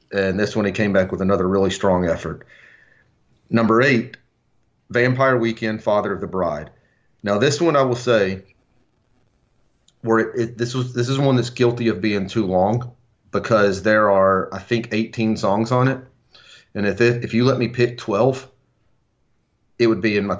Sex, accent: male, American